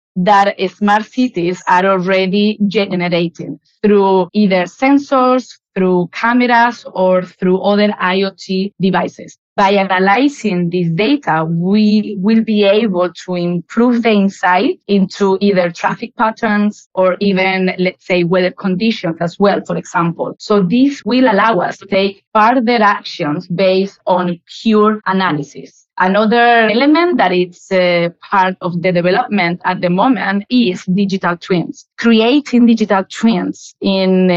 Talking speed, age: 130 wpm, 30-49